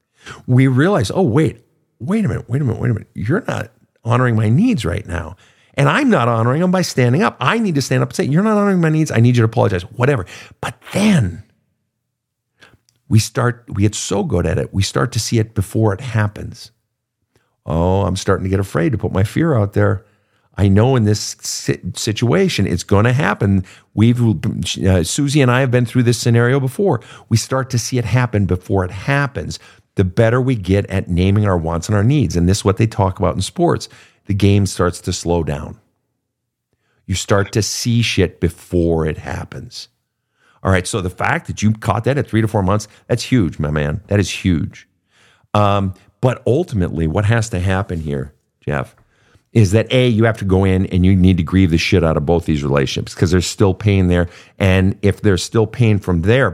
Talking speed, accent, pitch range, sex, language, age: 210 wpm, American, 95-125 Hz, male, English, 50-69